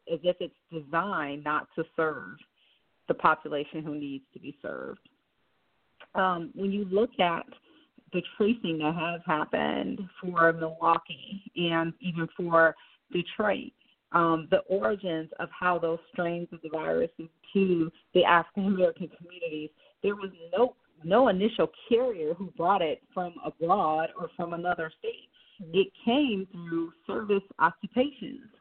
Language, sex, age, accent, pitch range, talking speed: English, female, 40-59, American, 165-220 Hz, 135 wpm